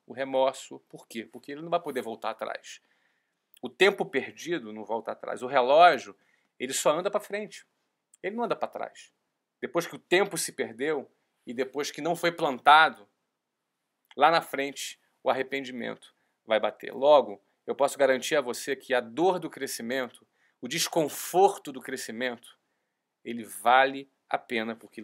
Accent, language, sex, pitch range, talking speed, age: Brazilian, Portuguese, male, 130-195 Hz, 165 wpm, 40-59